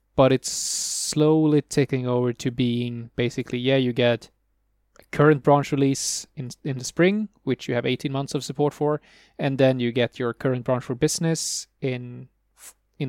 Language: English